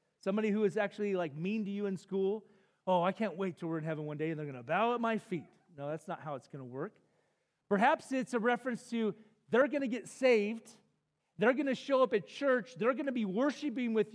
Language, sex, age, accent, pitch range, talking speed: English, male, 40-59, American, 165-230 Hz, 250 wpm